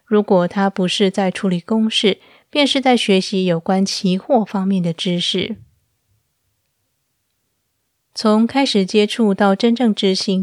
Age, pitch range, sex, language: 20-39, 185-225 Hz, female, Chinese